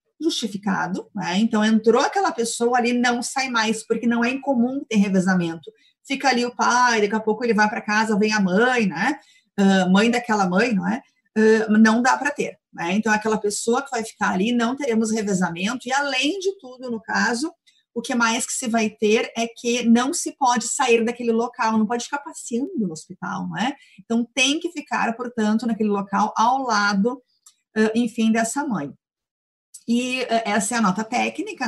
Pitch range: 205-245 Hz